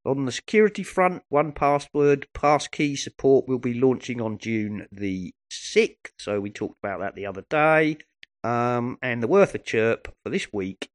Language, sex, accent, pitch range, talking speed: English, male, British, 100-130 Hz, 175 wpm